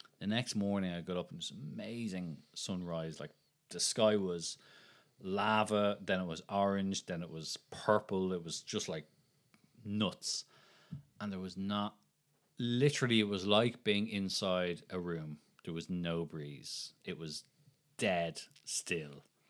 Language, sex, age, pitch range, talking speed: English, male, 30-49, 85-110 Hz, 150 wpm